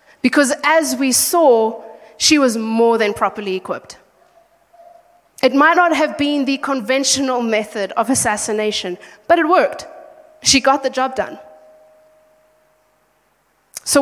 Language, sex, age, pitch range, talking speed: English, female, 20-39, 225-295 Hz, 125 wpm